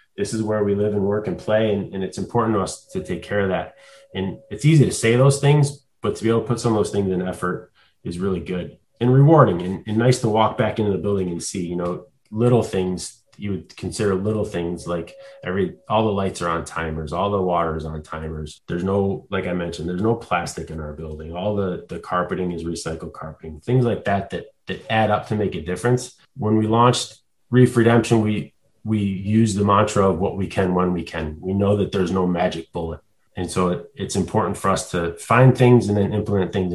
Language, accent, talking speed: English, American, 235 wpm